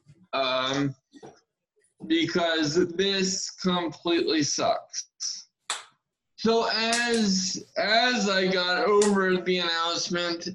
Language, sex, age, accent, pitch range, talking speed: English, male, 20-39, American, 150-180 Hz, 75 wpm